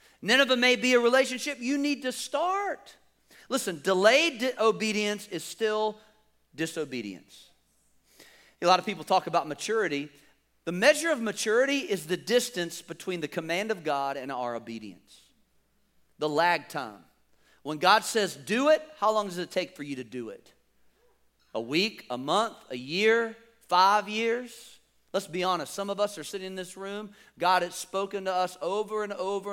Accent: American